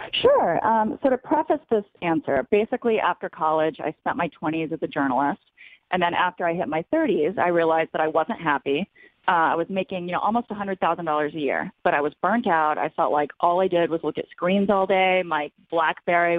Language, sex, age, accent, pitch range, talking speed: English, female, 30-49, American, 155-185 Hz, 215 wpm